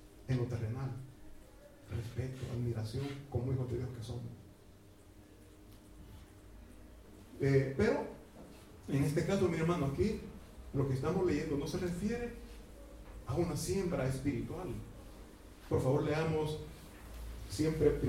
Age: 40-59